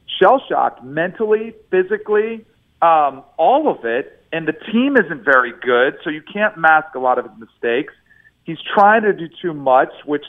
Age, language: 40-59, English